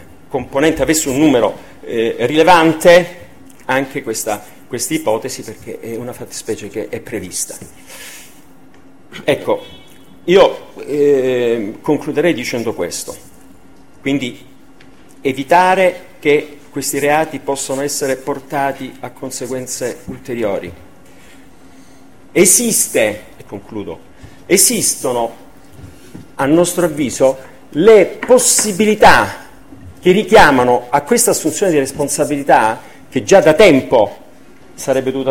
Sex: male